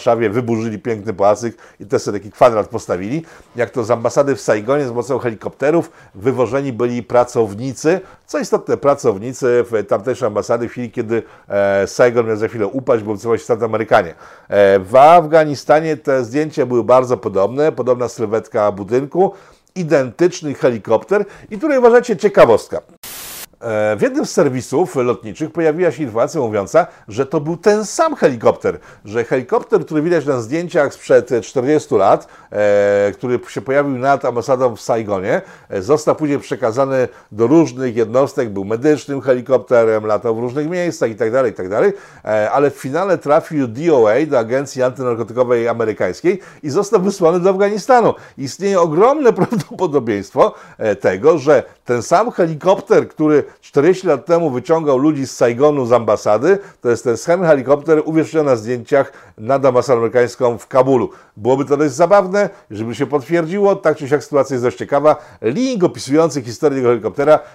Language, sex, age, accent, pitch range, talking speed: Polish, male, 50-69, native, 120-160 Hz, 150 wpm